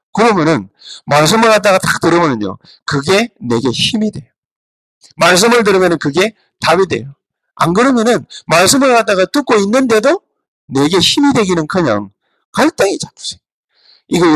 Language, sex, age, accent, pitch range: Korean, male, 40-59, native, 170-270 Hz